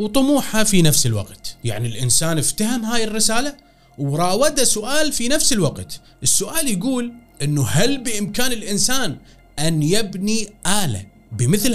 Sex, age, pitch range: male, 30-49, 140-210 Hz